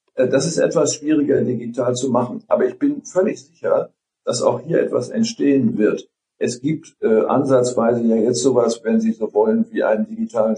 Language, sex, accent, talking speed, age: German, male, German, 180 wpm, 50-69